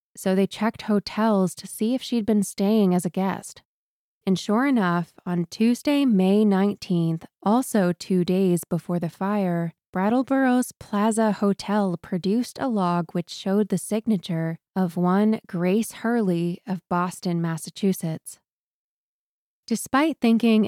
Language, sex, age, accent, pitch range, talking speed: English, female, 20-39, American, 175-210 Hz, 130 wpm